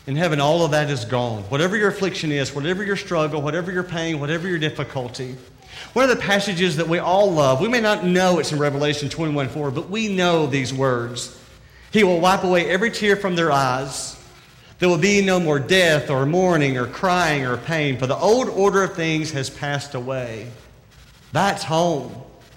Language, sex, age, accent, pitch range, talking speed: English, male, 40-59, American, 135-190 Hz, 195 wpm